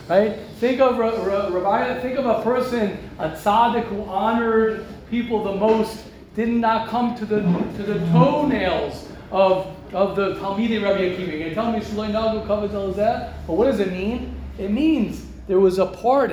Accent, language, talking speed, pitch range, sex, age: American, English, 170 wpm, 195-235 Hz, male, 40-59